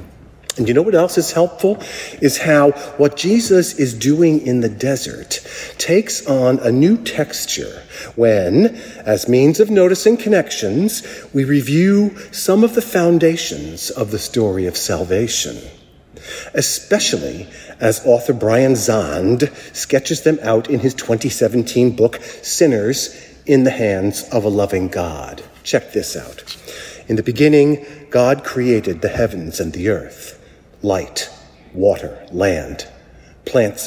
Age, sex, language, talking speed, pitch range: 50-69, male, English, 135 wpm, 110-155 Hz